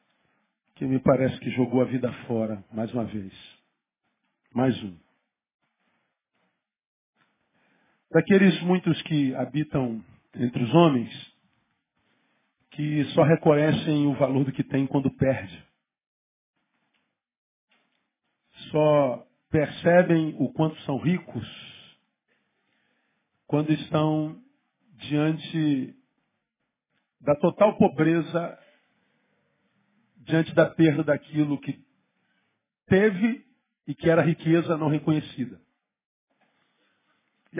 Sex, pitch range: male, 135-170 Hz